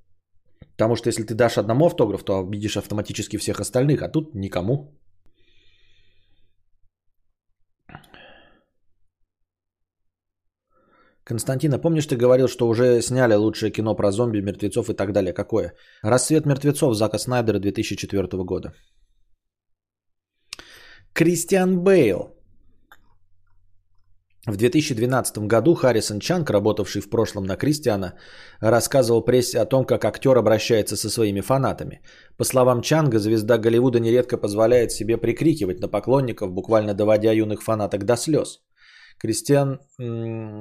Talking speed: 115 wpm